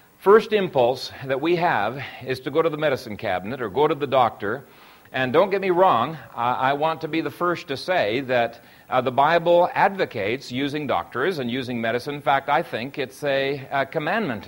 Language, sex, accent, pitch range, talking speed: English, male, American, 130-185 Hz, 190 wpm